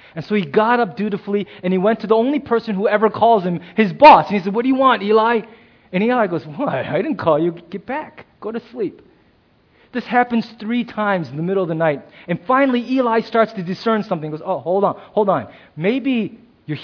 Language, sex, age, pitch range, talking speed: English, male, 30-49, 175-240 Hz, 240 wpm